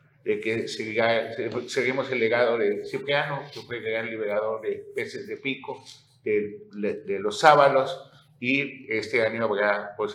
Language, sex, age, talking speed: Spanish, male, 50-69, 155 wpm